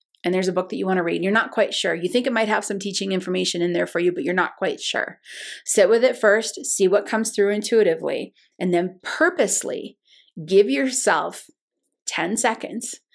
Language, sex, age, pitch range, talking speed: English, female, 30-49, 185-245 Hz, 215 wpm